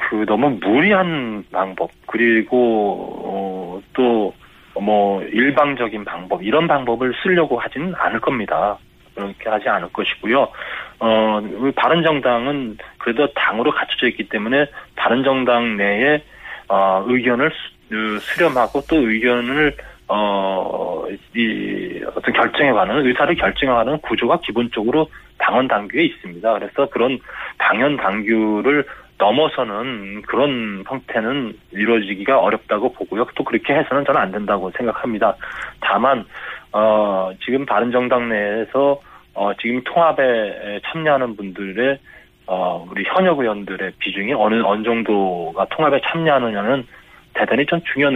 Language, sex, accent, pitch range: Korean, male, native, 100-130 Hz